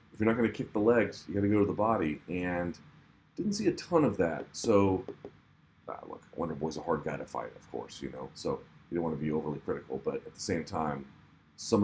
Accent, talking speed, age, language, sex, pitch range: American, 255 wpm, 40-59, English, male, 85-110 Hz